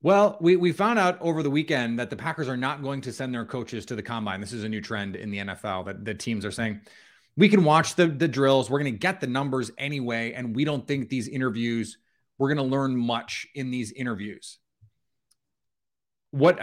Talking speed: 225 wpm